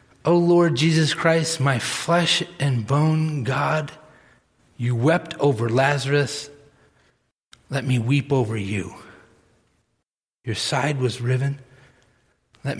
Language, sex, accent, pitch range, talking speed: English, male, American, 120-155 Hz, 110 wpm